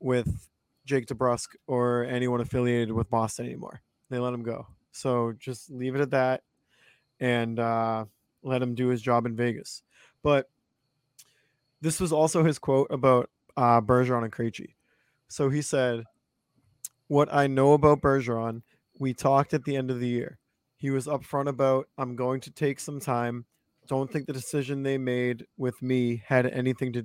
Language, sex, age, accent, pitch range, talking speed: English, male, 20-39, American, 125-140 Hz, 170 wpm